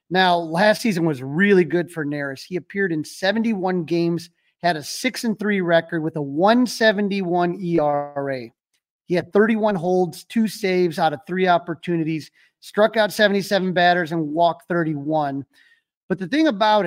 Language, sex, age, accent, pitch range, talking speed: English, male, 30-49, American, 160-195 Hz, 155 wpm